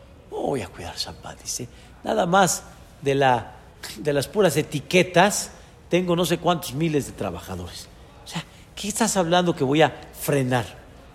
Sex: male